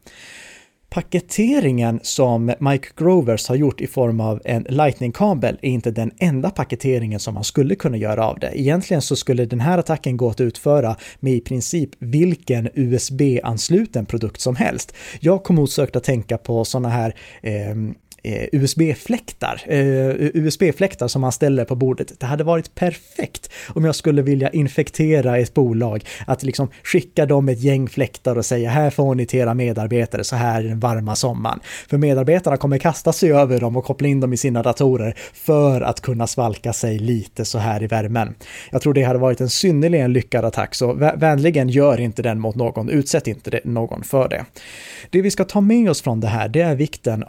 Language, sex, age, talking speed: Swedish, male, 30-49, 185 wpm